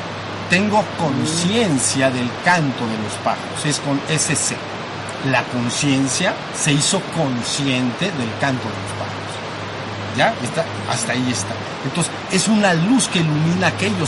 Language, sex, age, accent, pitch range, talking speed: Spanish, male, 50-69, Mexican, 130-170 Hz, 130 wpm